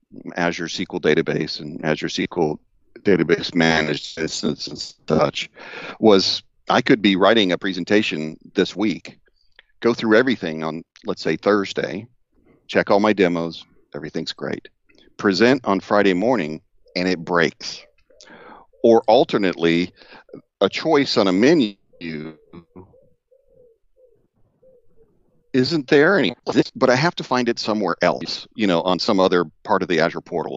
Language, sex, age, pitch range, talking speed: English, male, 40-59, 90-120 Hz, 135 wpm